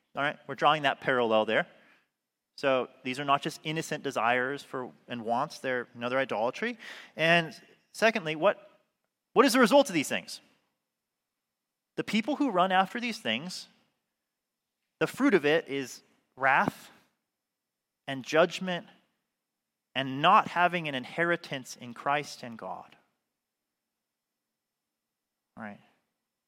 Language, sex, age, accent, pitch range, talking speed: English, male, 30-49, American, 120-170 Hz, 125 wpm